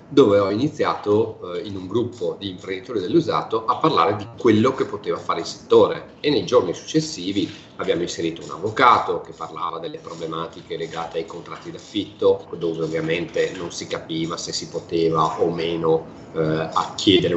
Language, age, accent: Italian, 40-59, native